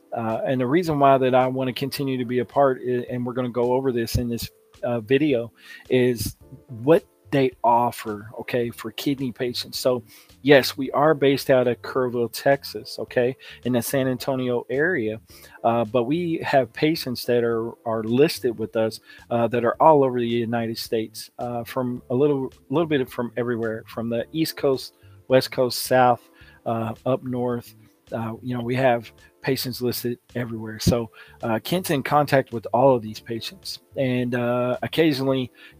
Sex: male